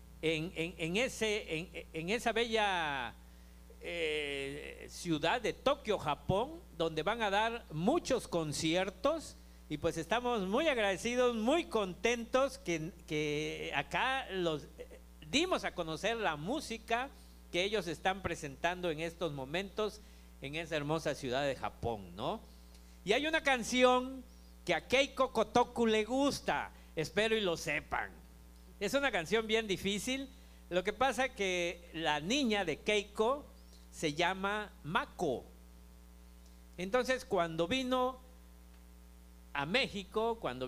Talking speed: 130 wpm